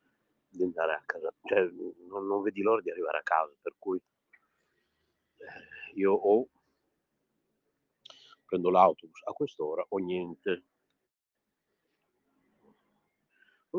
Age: 50-69